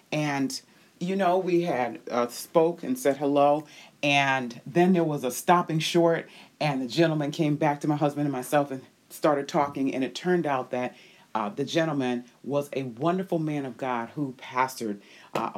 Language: English